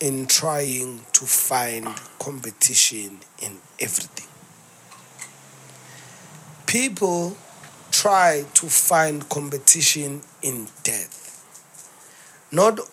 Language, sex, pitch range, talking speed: English, male, 135-175 Hz, 70 wpm